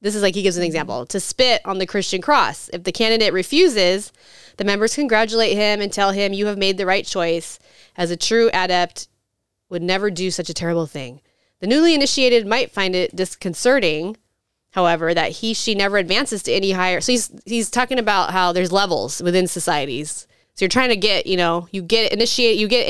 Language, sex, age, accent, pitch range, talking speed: English, female, 20-39, American, 180-225 Hz, 205 wpm